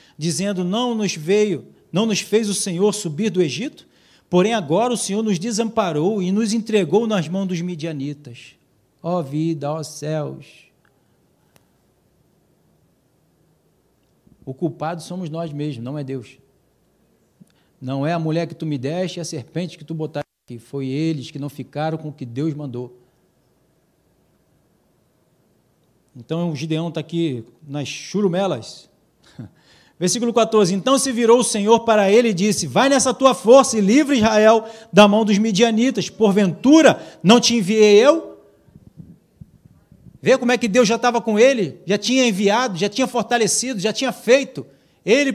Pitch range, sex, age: 165-235 Hz, male, 50-69